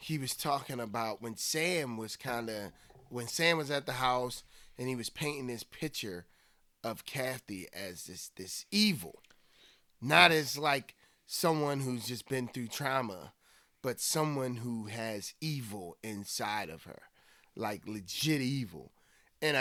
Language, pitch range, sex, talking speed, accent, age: English, 105-140 Hz, male, 145 wpm, American, 30-49